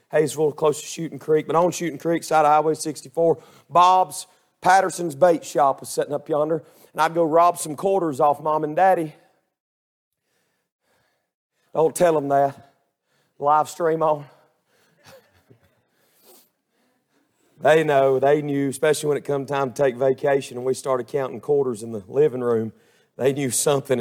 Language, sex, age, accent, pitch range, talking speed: English, male, 40-59, American, 150-220 Hz, 155 wpm